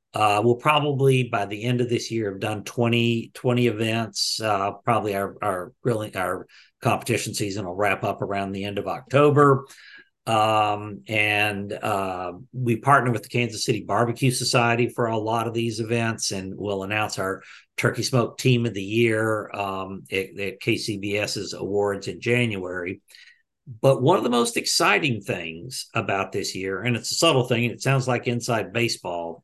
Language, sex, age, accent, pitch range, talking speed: English, male, 50-69, American, 100-125 Hz, 175 wpm